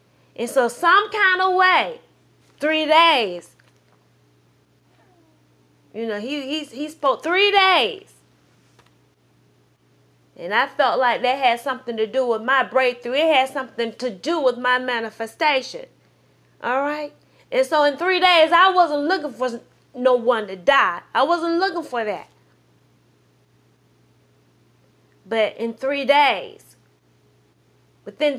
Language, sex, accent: English, female, American